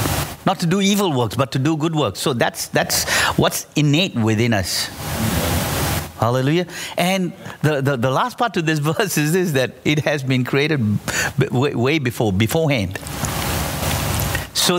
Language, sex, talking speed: English, male, 160 wpm